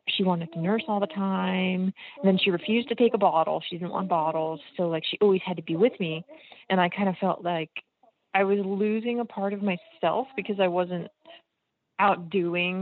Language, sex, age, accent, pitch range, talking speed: English, female, 30-49, American, 170-195 Hz, 210 wpm